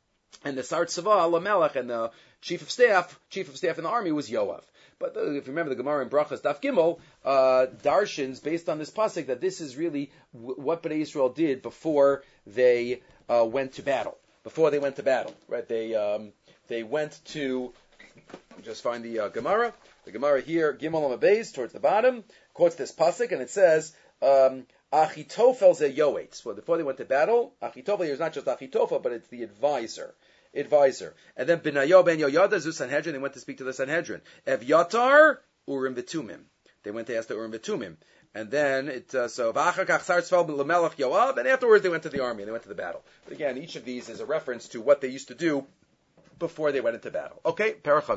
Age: 40-59